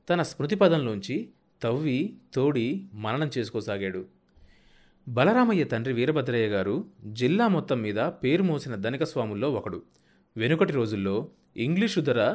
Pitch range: 110-160 Hz